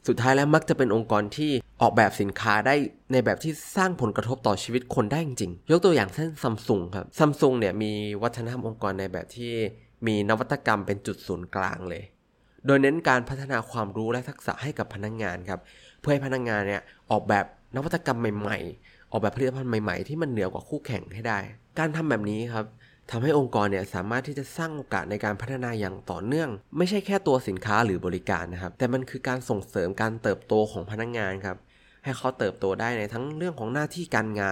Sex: male